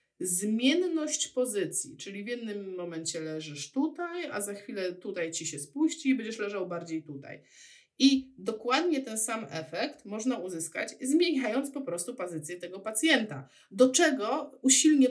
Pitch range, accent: 185-255 Hz, native